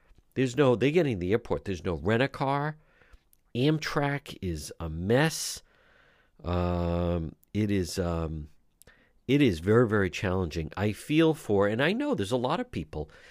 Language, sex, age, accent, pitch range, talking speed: English, male, 50-69, American, 90-130 Hz, 160 wpm